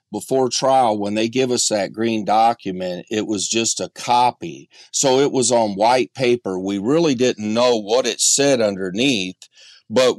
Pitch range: 105-125 Hz